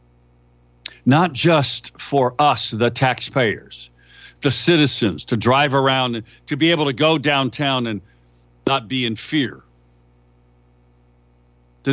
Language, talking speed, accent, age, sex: English, 120 wpm, American, 60-79, male